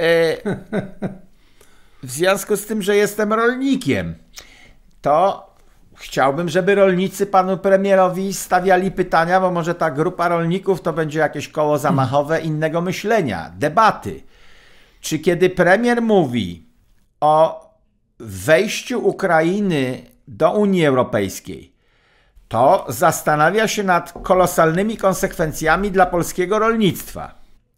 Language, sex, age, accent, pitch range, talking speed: Polish, male, 50-69, native, 150-200 Hz, 100 wpm